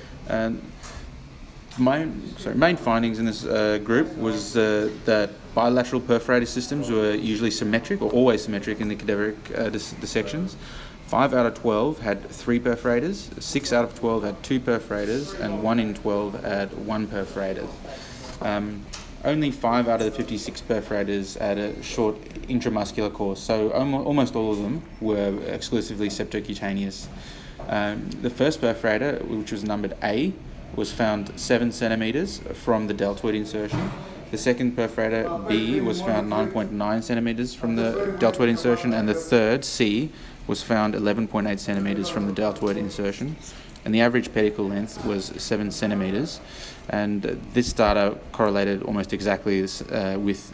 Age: 20-39